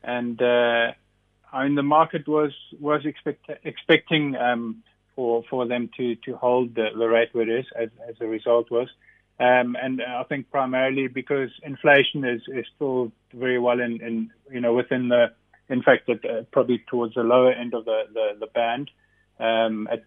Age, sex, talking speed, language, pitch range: 30-49, male, 185 wpm, English, 115-130 Hz